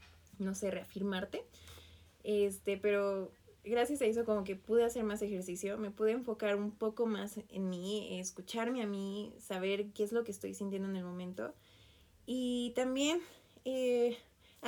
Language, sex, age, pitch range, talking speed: Spanish, female, 20-39, 200-235 Hz, 155 wpm